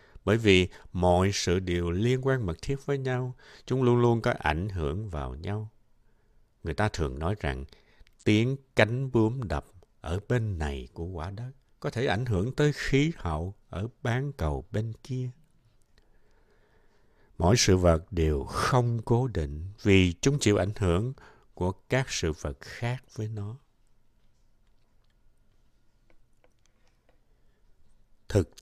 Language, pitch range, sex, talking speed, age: Vietnamese, 90-120 Hz, male, 140 wpm, 60-79